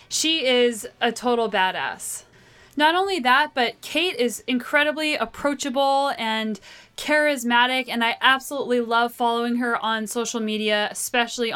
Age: 10-29